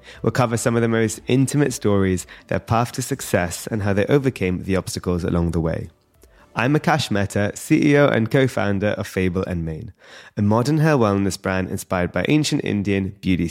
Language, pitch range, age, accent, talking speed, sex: English, 95-130 Hz, 20-39, British, 180 wpm, male